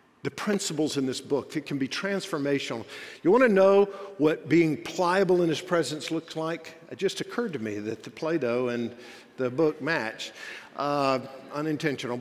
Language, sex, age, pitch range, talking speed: English, male, 50-69, 130-165 Hz, 170 wpm